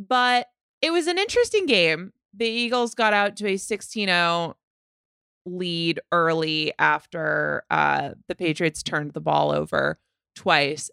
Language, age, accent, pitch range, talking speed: English, 20-39, American, 160-205 Hz, 130 wpm